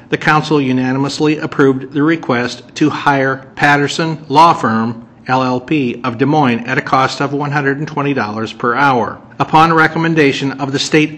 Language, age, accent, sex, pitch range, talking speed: English, 50-69, American, male, 125-150 Hz, 145 wpm